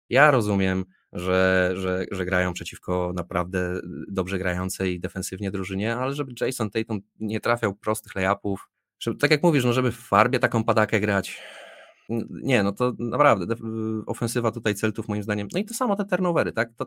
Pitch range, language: 95-125 Hz, Polish